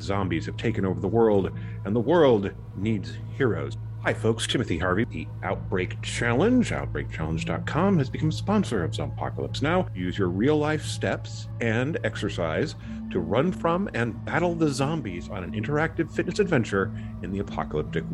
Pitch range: 100-135 Hz